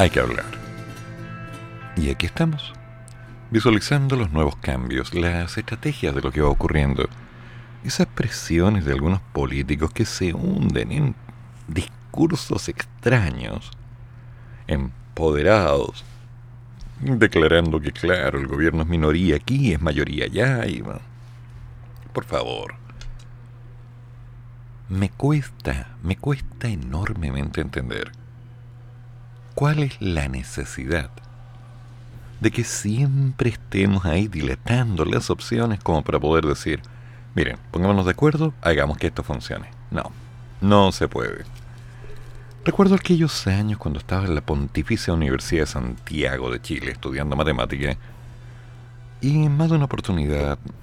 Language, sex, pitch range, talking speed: Spanish, male, 80-120 Hz, 115 wpm